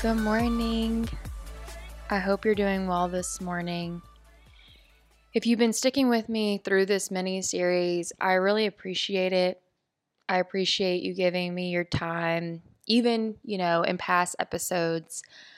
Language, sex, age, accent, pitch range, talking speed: English, female, 20-39, American, 180-225 Hz, 140 wpm